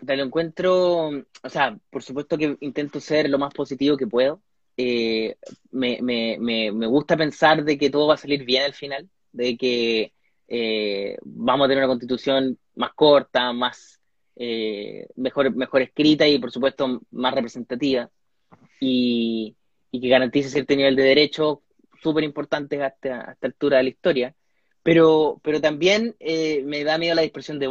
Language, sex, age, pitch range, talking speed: Spanish, male, 20-39, 130-160 Hz, 165 wpm